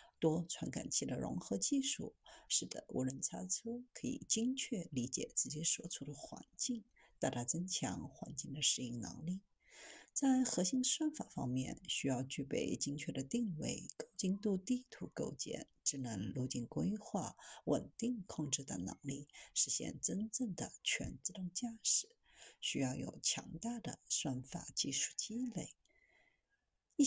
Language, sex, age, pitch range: Chinese, female, 50-69, 140-235 Hz